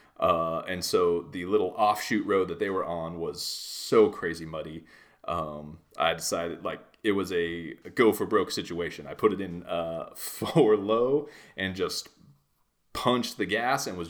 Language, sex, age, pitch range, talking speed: English, male, 30-49, 85-115 Hz, 170 wpm